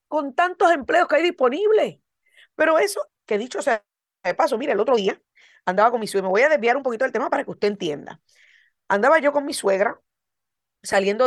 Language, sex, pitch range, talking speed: Spanish, female, 205-265 Hz, 210 wpm